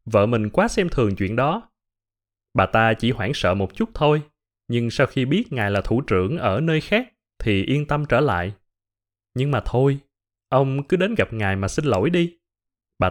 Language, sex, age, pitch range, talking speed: Vietnamese, male, 20-39, 100-145 Hz, 200 wpm